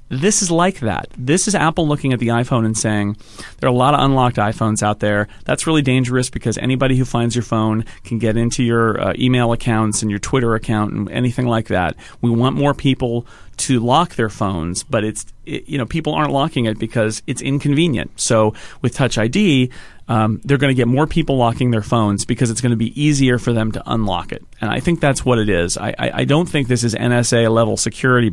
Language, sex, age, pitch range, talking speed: English, male, 40-59, 110-130 Hz, 230 wpm